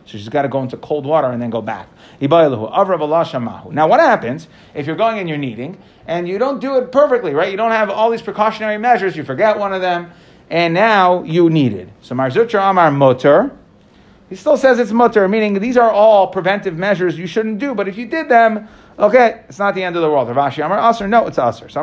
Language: English